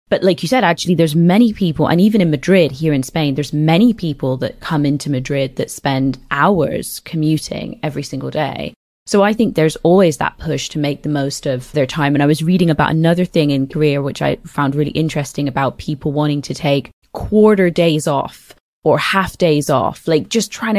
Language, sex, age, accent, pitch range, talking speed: English, female, 20-39, British, 145-185 Hz, 210 wpm